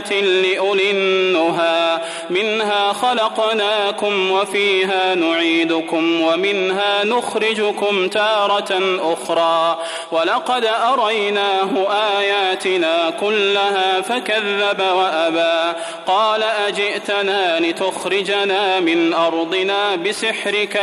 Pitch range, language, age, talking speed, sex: 185-215 Hz, English, 30-49, 60 wpm, male